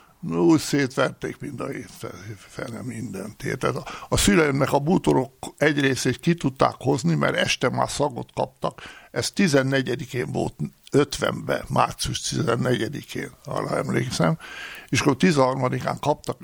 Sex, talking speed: male, 115 wpm